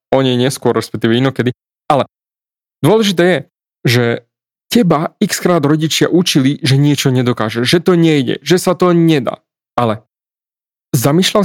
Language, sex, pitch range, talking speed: Slovak, male, 120-160 Hz, 130 wpm